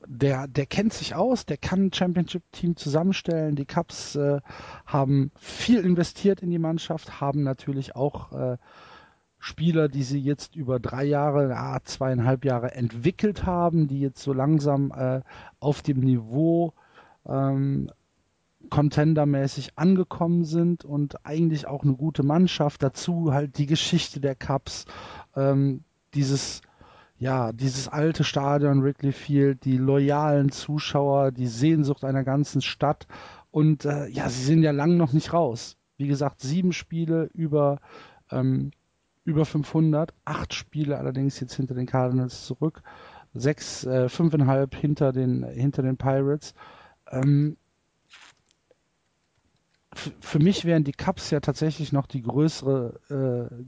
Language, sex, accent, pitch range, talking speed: German, male, German, 135-155 Hz, 135 wpm